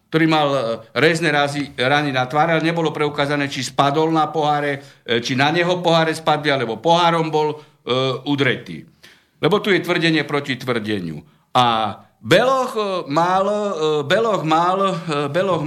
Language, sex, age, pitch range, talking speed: Slovak, male, 60-79, 140-175 Hz, 130 wpm